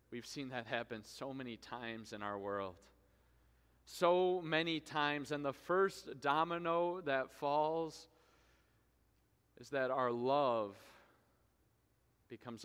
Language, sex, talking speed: English, male, 115 wpm